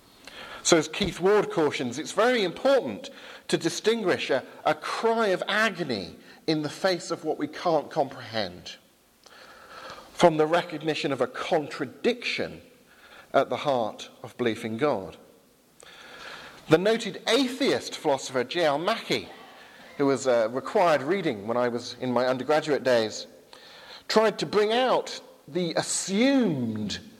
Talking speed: 130 wpm